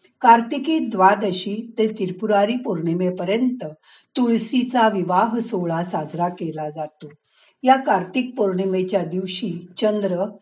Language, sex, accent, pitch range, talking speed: Marathi, female, native, 170-230 Hz, 90 wpm